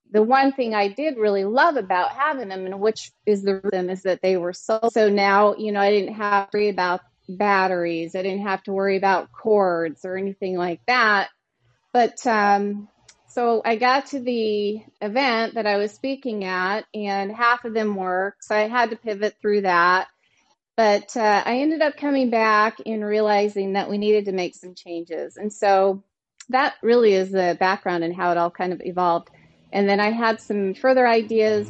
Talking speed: 195 wpm